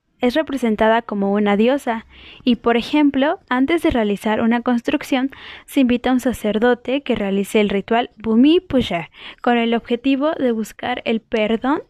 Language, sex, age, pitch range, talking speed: Spanish, female, 10-29, 220-270 Hz, 155 wpm